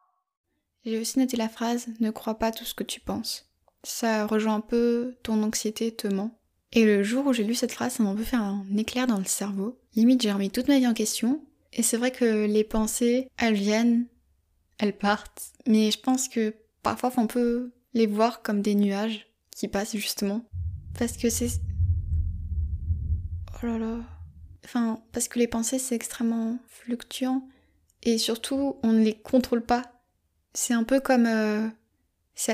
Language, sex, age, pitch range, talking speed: French, female, 20-39, 210-235 Hz, 185 wpm